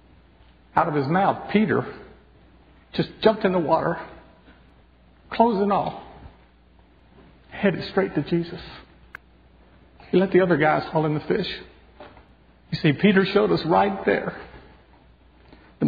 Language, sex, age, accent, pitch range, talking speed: English, male, 60-79, American, 135-180 Hz, 125 wpm